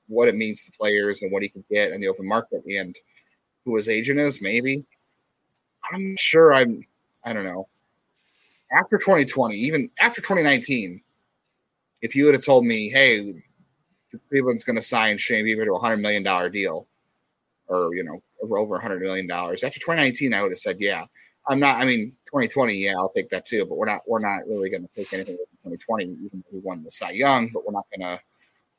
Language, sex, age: English, male, 30-49